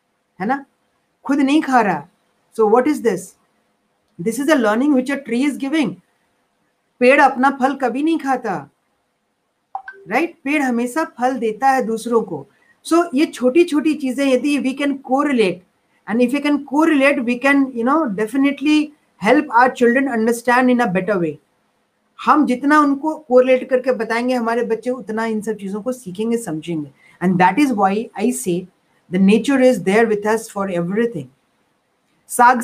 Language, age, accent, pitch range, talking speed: Hindi, 40-59, native, 220-275 Hz, 160 wpm